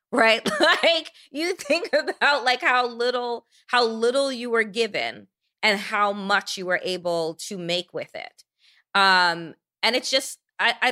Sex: female